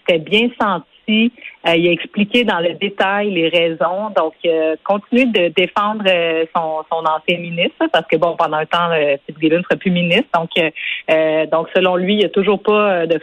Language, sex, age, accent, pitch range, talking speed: French, female, 30-49, Canadian, 165-205 Hz, 205 wpm